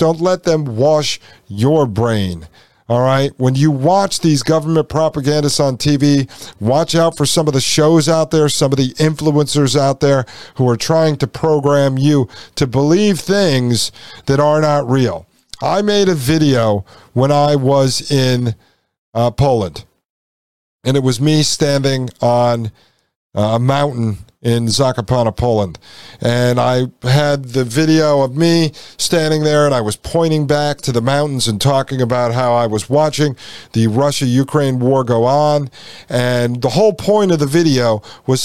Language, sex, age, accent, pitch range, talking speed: English, male, 50-69, American, 125-160 Hz, 165 wpm